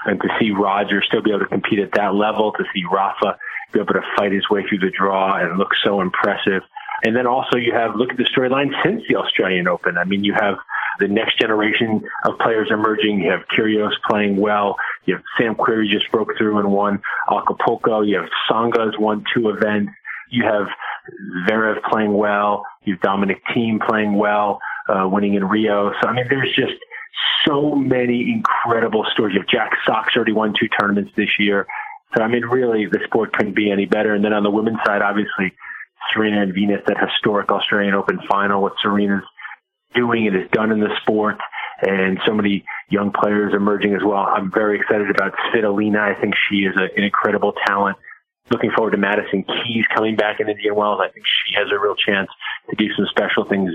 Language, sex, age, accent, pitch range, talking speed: English, male, 30-49, American, 100-110 Hz, 205 wpm